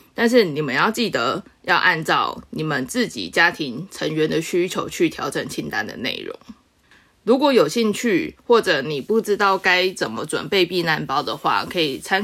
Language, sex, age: Chinese, female, 20-39